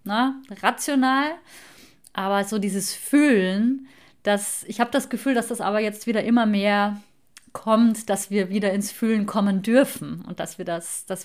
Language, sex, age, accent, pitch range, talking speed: German, female, 30-49, German, 195-235 Hz, 150 wpm